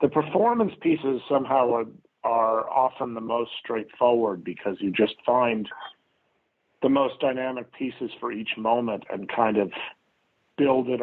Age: 40-59